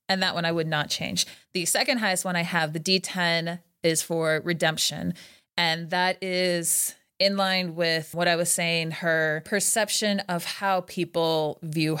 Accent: American